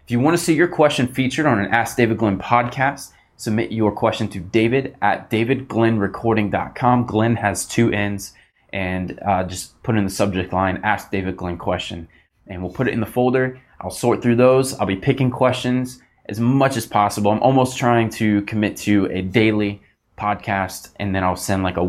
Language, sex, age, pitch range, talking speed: English, male, 20-39, 95-120 Hz, 195 wpm